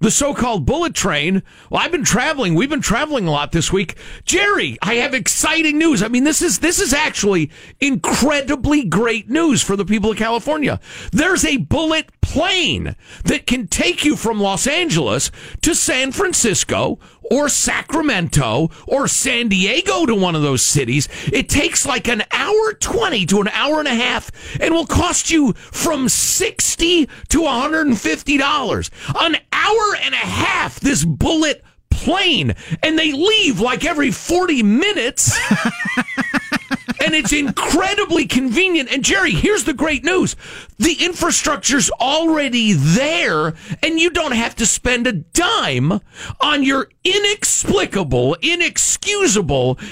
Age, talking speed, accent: 50-69, 145 wpm, American